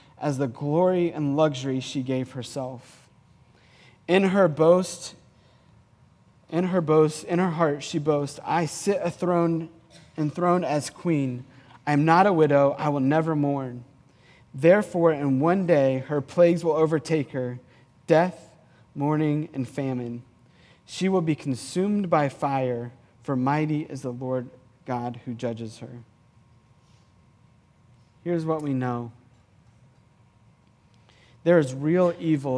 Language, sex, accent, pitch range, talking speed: English, male, American, 125-150 Hz, 130 wpm